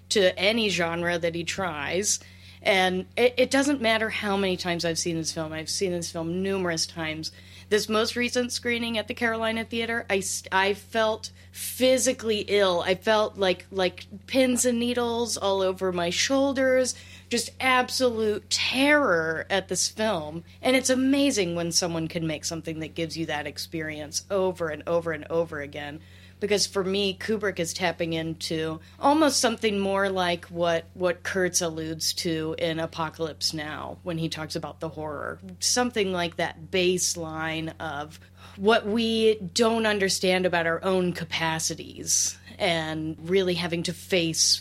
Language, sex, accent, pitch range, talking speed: English, female, American, 160-210 Hz, 155 wpm